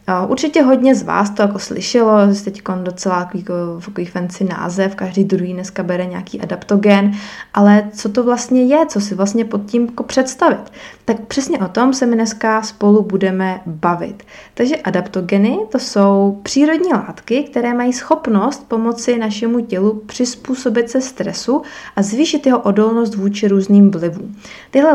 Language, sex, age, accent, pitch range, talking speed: Czech, female, 20-39, native, 200-240 Hz, 150 wpm